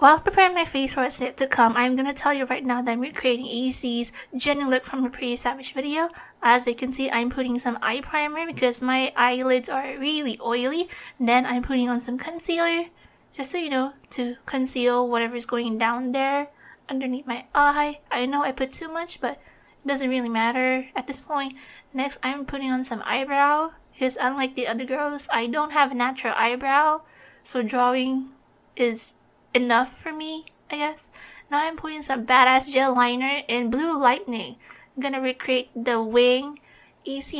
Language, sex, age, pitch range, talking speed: English, female, 20-39, 245-290 Hz, 185 wpm